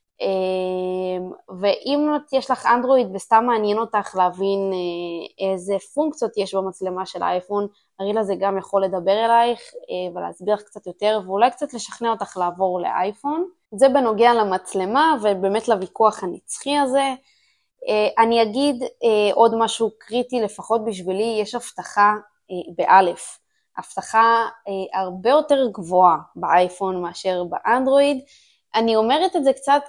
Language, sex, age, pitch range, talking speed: Hebrew, female, 20-39, 190-240 Hz, 135 wpm